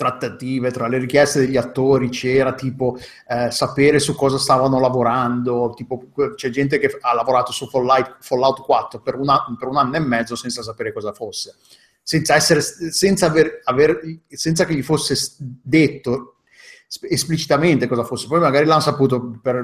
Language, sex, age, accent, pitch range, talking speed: Italian, male, 30-49, native, 125-140 Hz, 165 wpm